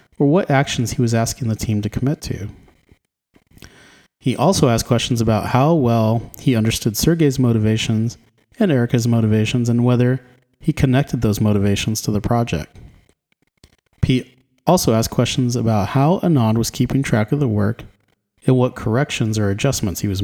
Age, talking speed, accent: 30-49, 160 wpm, American